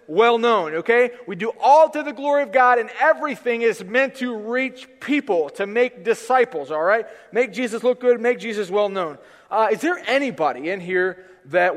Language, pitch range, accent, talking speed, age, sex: English, 185-245 Hz, American, 180 wpm, 30-49, male